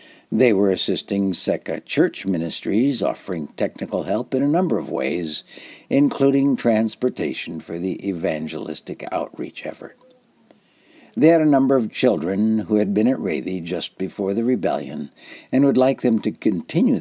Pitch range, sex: 100-140 Hz, male